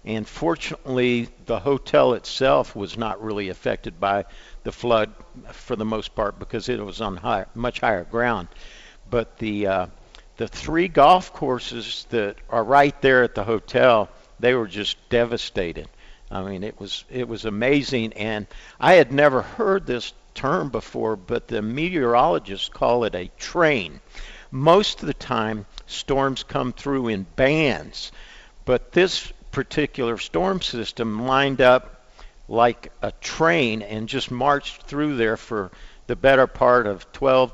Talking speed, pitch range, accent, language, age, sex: 150 wpm, 110-135 Hz, American, English, 50-69, male